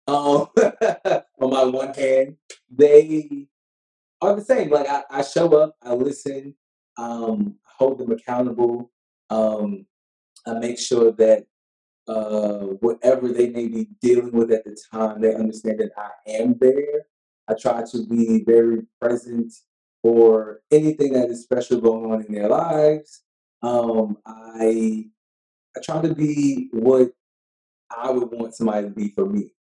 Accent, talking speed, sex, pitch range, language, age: American, 145 wpm, male, 110-135 Hz, English, 20-39